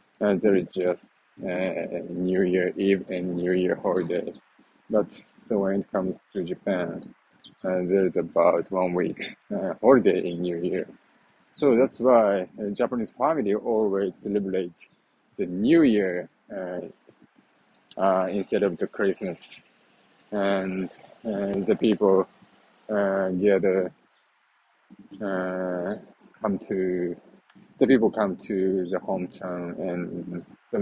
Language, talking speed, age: English, 125 wpm, 20-39